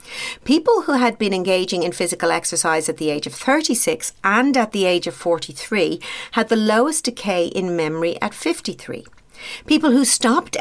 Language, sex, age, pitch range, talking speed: English, female, 50-69, 175-245 Hz, 170 wpm